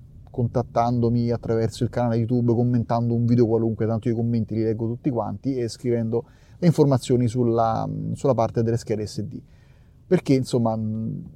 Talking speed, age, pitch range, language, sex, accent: 150 wpm, 30-49, 115-150 Hz, Italian, male, native